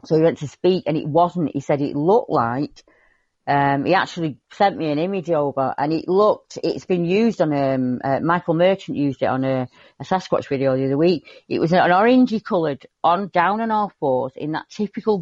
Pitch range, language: 135-185 Hz, English